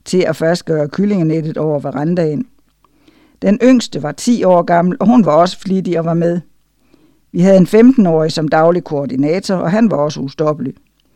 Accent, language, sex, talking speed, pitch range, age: native, Danish, female, 175 wpm, 155-190 Hz, 60-79